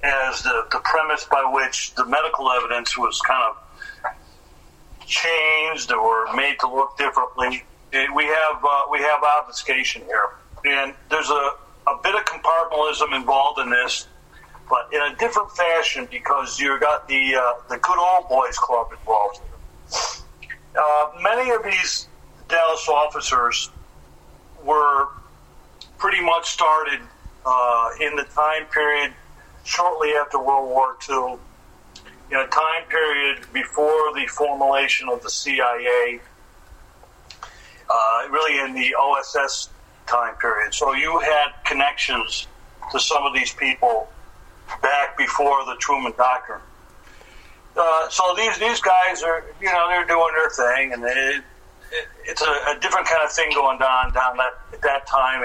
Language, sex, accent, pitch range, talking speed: English, male, American, 130-165 Hz, 140 wpm